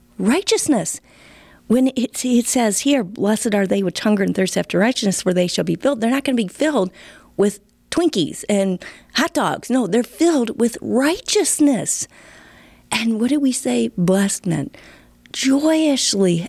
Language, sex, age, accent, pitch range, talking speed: English, female, 40-59, American, 180-260 Hz, 160 wpm